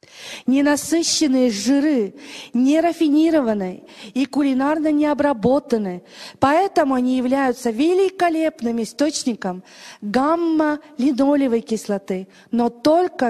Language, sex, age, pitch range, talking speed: English, female, 40-59, 215-295 Hz, 70 wpm